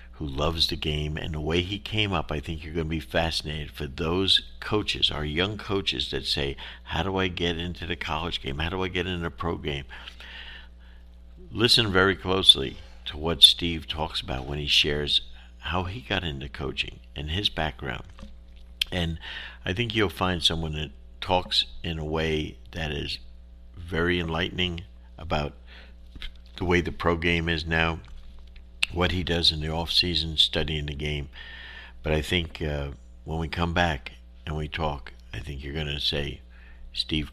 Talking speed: 175 wpm